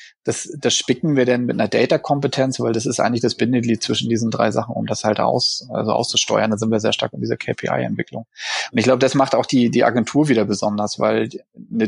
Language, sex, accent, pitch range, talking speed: German, male, German, 115-130 Hz, 235 wpm